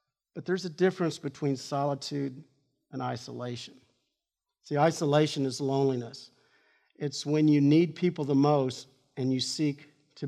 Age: 50-69